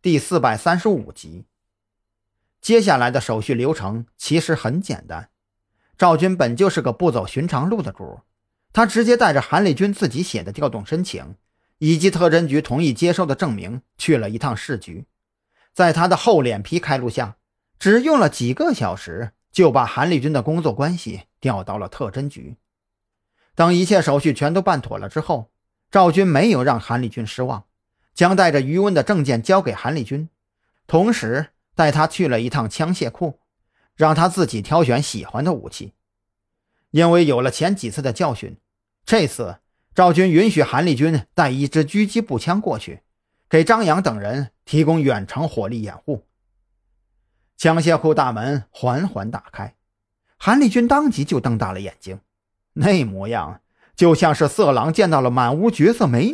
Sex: male